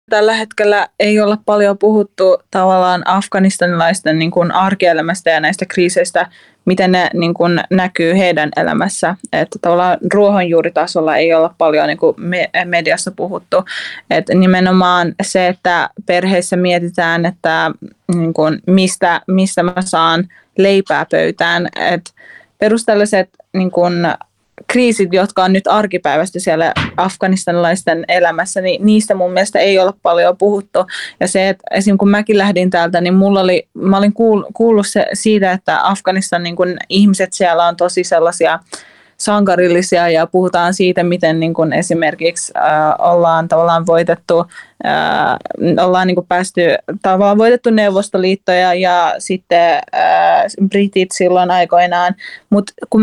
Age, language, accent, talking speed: 20-39, Finnish, native, 120 wpm